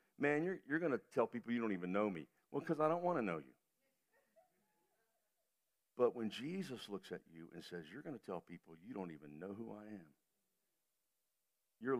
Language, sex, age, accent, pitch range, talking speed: English, male, 60-79, American, 95-120 Hz, 205 wpm